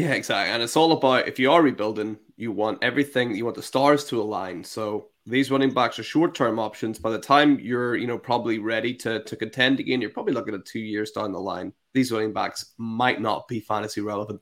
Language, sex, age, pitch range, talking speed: English, male, 20-39, 120-150 Hz, 230 wpm